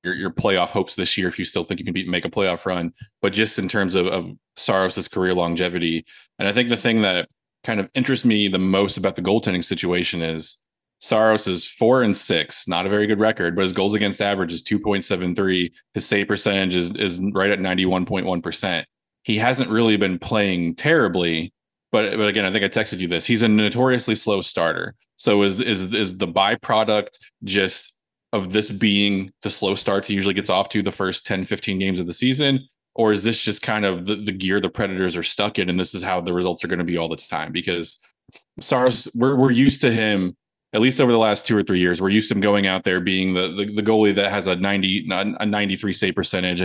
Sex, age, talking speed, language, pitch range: male, 20-39, 230 wpm, English, 95-110 Hz